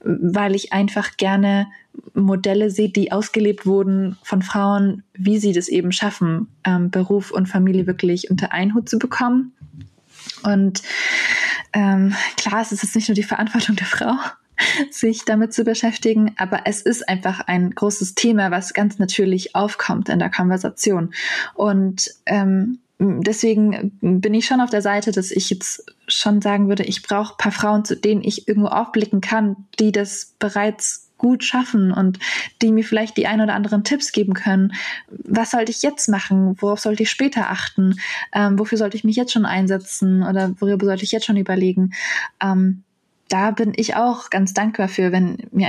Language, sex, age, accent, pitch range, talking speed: German, female, 20-39, German, 190-220 Hz, 175 wpm